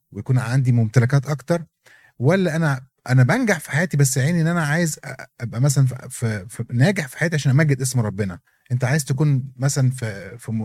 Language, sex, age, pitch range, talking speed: Arabic, male, 30-49, 125-150 Hz, 175 wpm